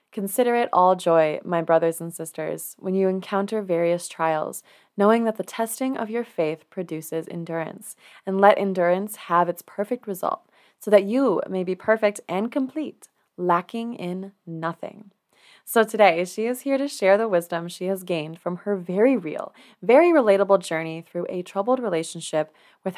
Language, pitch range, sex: English, 170-220 Hz, female